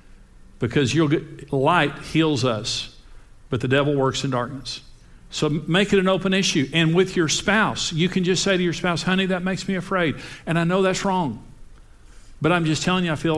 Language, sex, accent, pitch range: English, male, American, 125-170 Hz